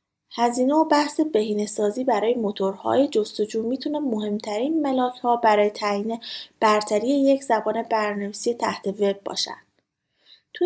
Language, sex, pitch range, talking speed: Persian, female, 200-255 Hz, 115 wpm